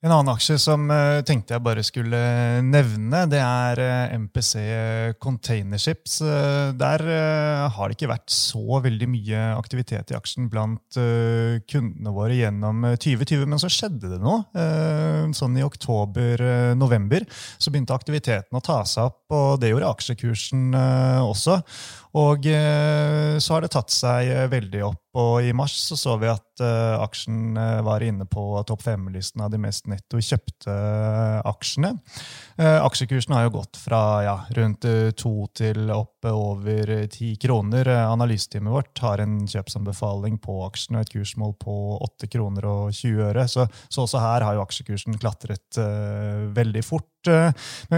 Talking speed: 145 wpm